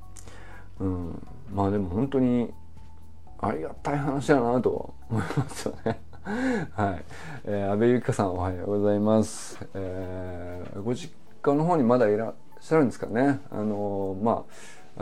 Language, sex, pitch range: Japanese, male, 95-150 Hz